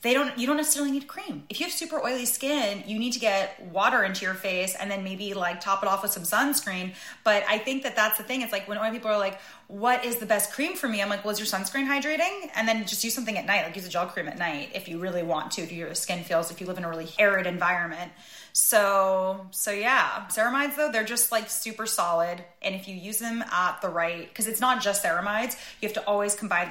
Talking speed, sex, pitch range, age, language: 265 wpm, female, 175-220 Hz, 20-39, English